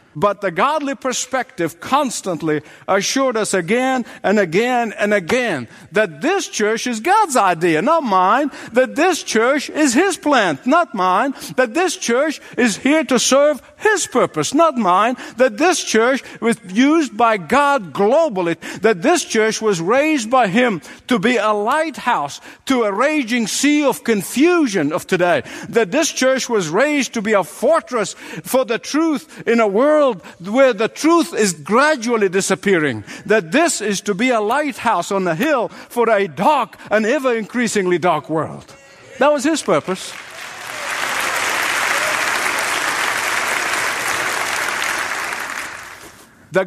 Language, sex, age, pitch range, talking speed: English, male, 60-79, 205-290 Hz, 140 wpm